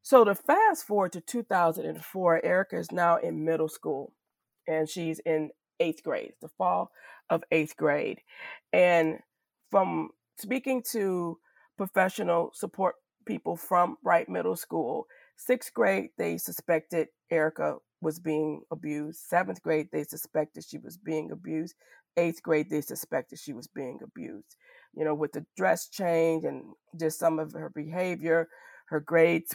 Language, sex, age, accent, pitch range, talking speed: English, female, 40-59, American, 155-185 Hz, 145 wpm